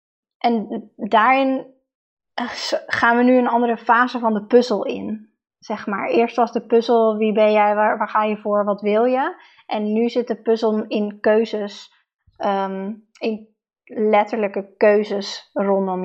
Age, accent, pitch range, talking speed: 20-39, Dutch, 210-245 Hz, 155 wpm